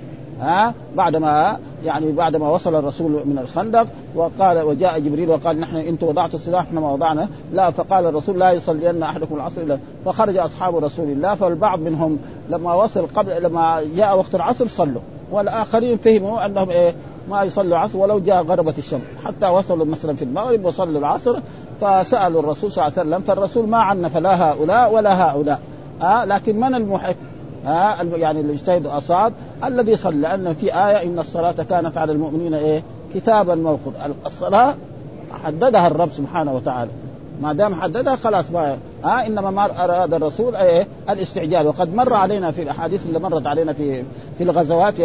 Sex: male